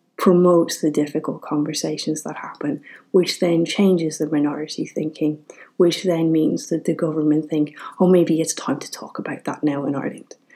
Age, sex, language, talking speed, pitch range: 30-49, female, English, 170 wpm, 155-185 Hz